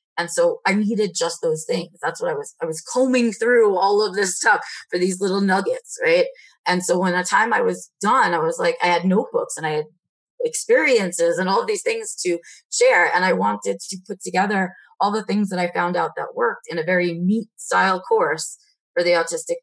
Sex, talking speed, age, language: female, 225 wpm, 20-39, English